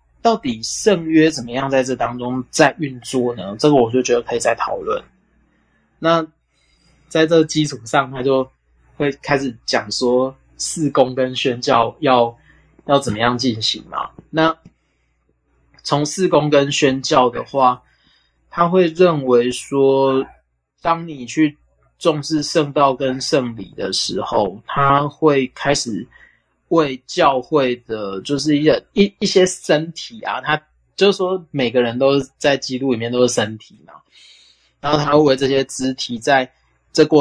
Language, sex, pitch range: Chinese, male, 120-150 Hz